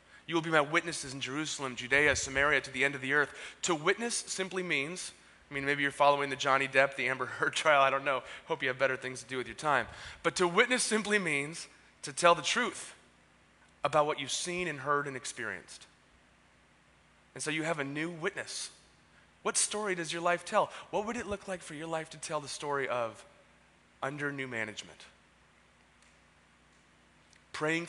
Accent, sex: American, male